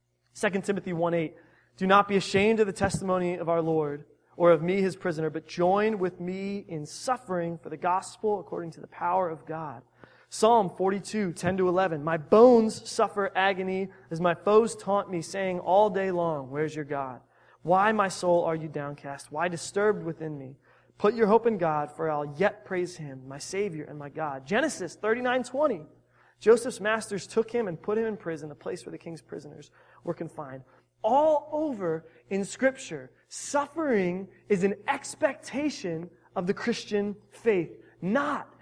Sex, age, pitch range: male, 20-39, 150-210 Hz